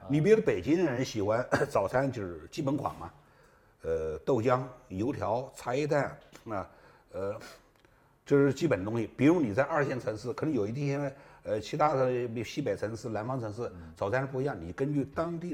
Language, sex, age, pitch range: Chinese, male, 60-79, 100-165 Hz